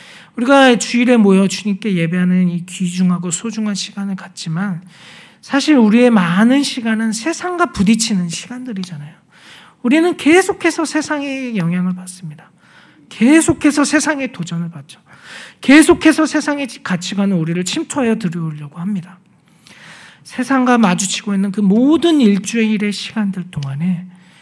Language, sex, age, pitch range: Korean, male, 40-59, 180-250 Hz